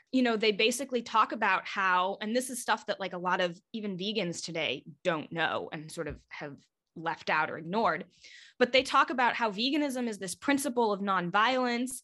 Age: 20-39